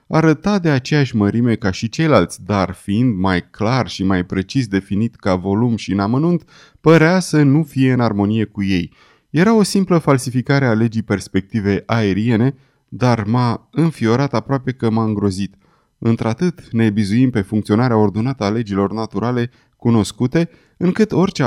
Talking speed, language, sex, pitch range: 150 wpm, Romanian, male, 105-140 Hz